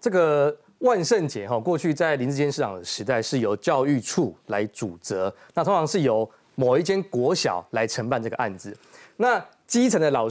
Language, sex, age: Chinese, male, 30-49